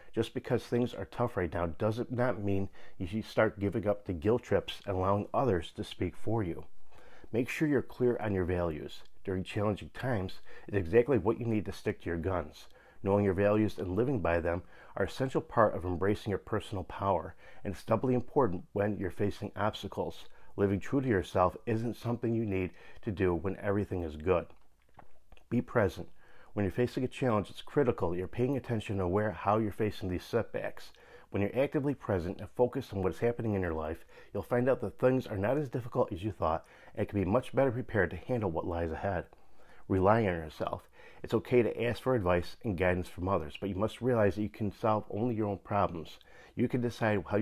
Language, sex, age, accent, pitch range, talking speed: English, male, 40-59, American, 95-120 Hz, 215 wpm